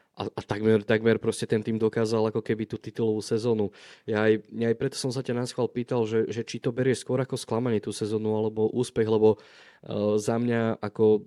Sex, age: male, 20-39